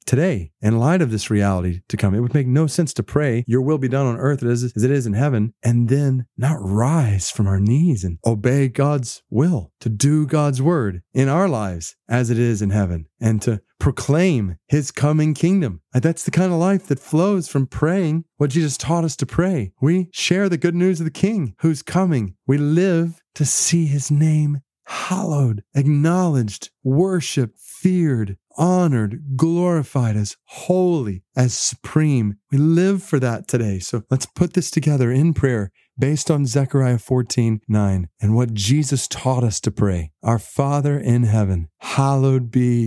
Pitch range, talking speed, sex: 105-150 Hz, 175 wpm, male